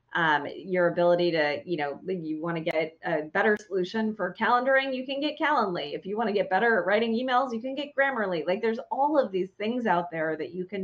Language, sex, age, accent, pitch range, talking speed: English, female, 30-49, American, 170-215 Hz, 240 wpm